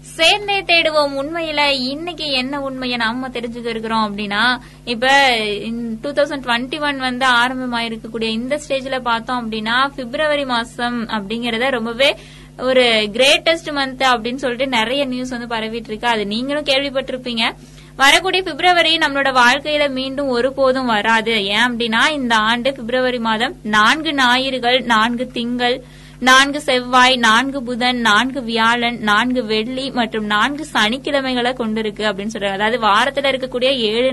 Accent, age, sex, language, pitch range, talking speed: native, 20-39, female, Tamil, 230-275 Hz, 120 wpm